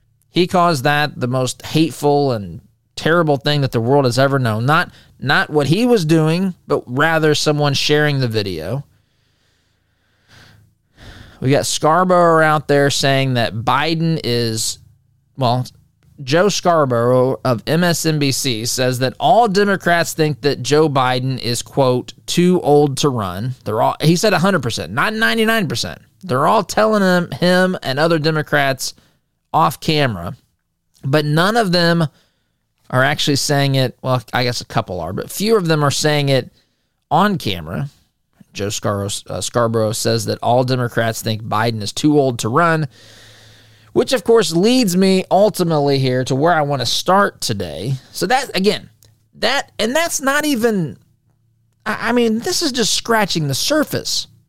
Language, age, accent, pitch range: English, 20-39, American, 115-165 Hz